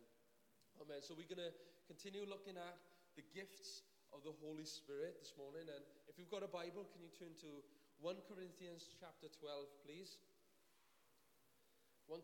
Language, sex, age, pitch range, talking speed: English, male, 30-49, 155-185 Hz, 155 wpm